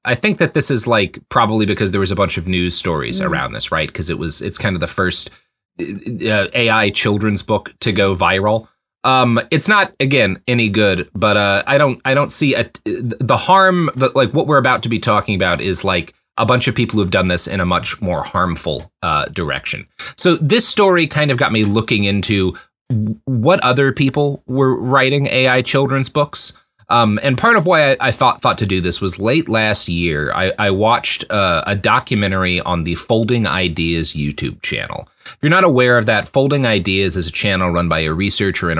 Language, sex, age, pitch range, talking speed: English, male, 30-49, 95-130 Hz, 210 wpm